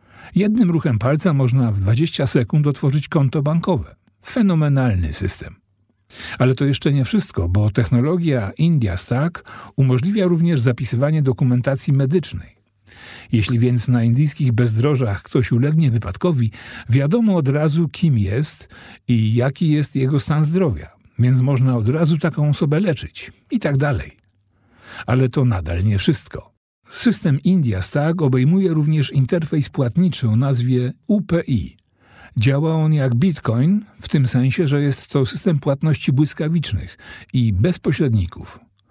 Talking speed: 135 wpm